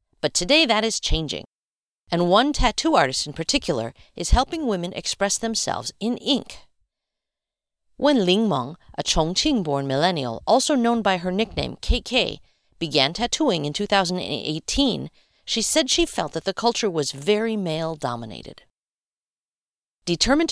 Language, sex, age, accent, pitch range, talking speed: English, female, 50-69, American, 165-250 Hz, 130 wpm